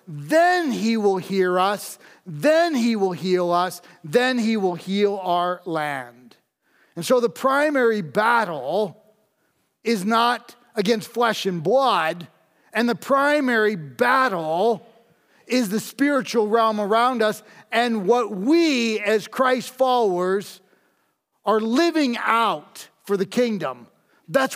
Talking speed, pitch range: 120 wpm, 180-240 Hz